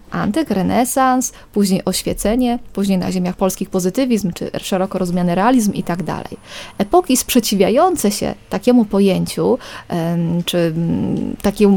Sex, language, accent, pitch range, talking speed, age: female, Polish, native, 190-235 Hz, 115 wpm, 20-39